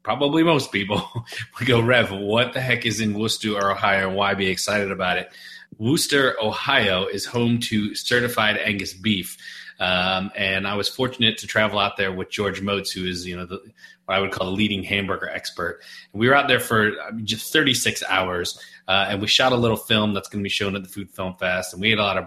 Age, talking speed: 30-49, 230 wpm